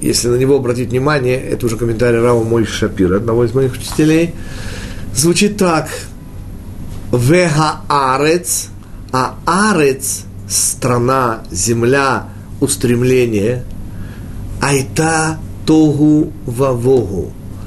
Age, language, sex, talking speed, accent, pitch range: 40-59, Russian, male, 90 wpm, native, 100-155 Hz